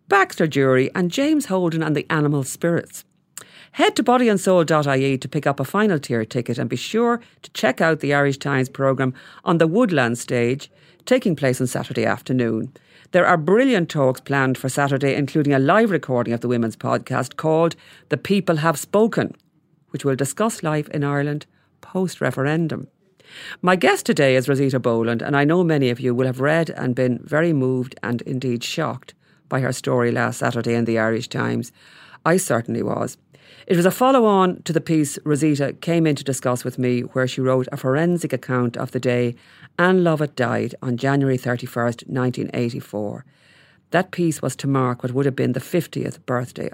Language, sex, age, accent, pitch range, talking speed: English, female, 40-59, Irish, 125-165 Hz, 180 wpm